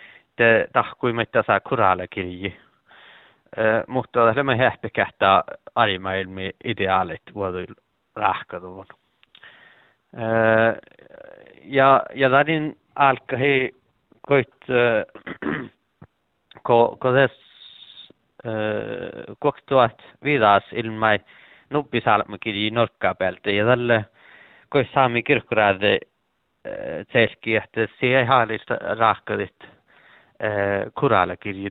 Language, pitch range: Czech, 100-130 Hz